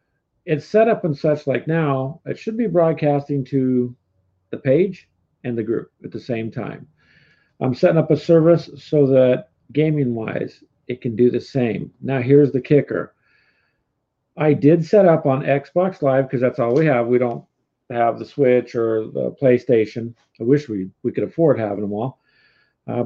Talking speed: 175 wpm